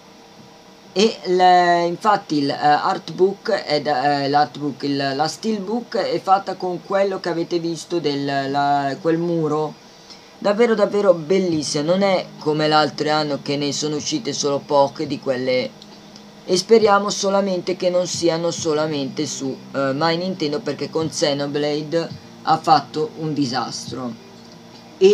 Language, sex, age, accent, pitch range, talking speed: Italian, female, 20-39, native, 145-190 Hz, 130 wpm